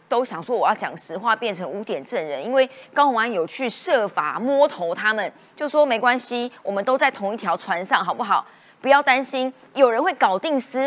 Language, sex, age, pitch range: Chinese, female, 30-49, 200-275 Hz